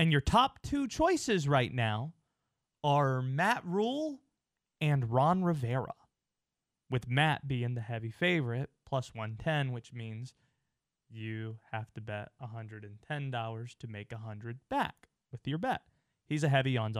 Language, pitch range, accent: English, 125-180 Hz, American